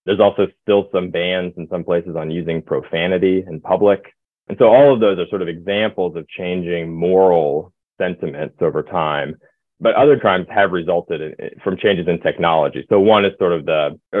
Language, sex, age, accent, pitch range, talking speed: English, male, 30-49, American, 85-100 Hz, 180 wpm